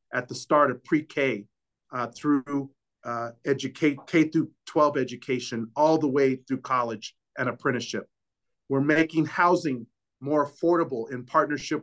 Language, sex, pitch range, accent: English, male, 130-150 Hz, American